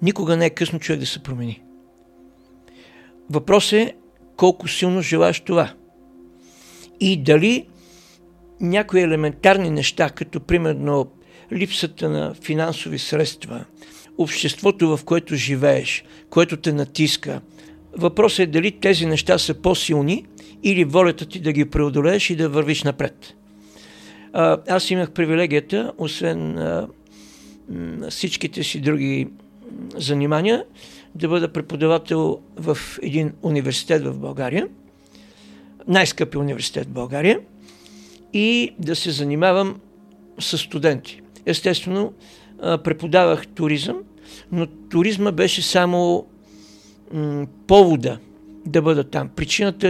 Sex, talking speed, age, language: male, 105 wpm, 60-79, Bulgarian